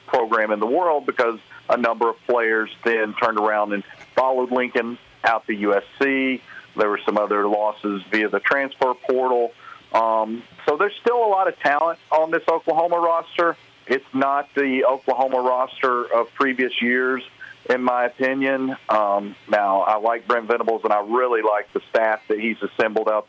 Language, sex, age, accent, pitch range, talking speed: English, male, 40-59, American, 110-130 Hz, 170 wpm